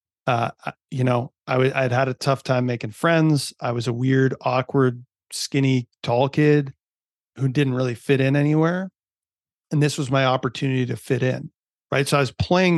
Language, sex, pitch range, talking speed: English, male, 125-145 Hz, 185 wpm